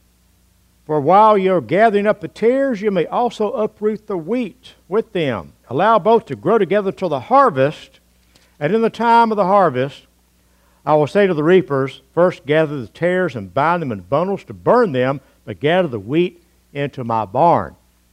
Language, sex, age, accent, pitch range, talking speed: English, male, 60-79, American, 130-210 Hz, 185 wpm